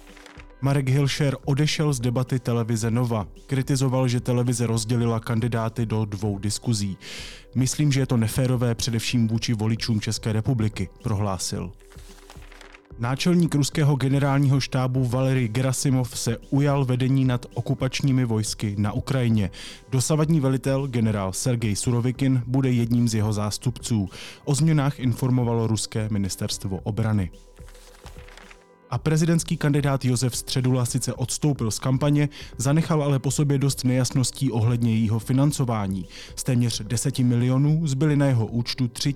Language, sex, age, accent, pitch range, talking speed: Czech, male, 30-49, native, 110-135 Hz, 125 wpm